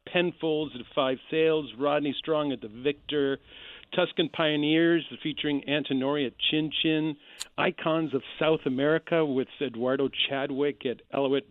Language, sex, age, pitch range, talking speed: English, male, 50-69, 130-165 Hz, 130 wpm